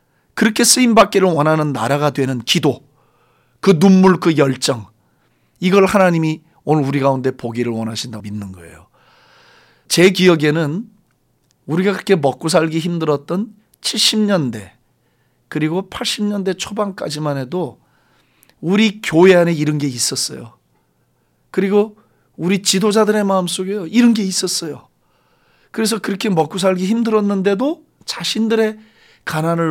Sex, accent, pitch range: male, native, 150-205 Hz